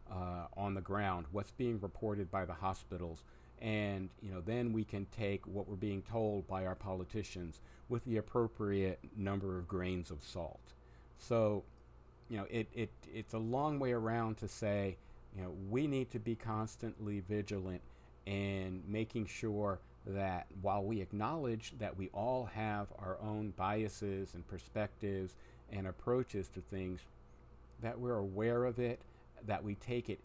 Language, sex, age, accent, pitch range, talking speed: English, male, 50-69, American, 95-110 Hz, 160 wpm